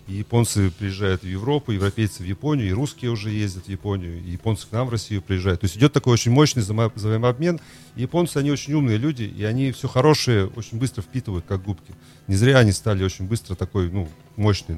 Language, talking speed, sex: Russian, 205 wpm, male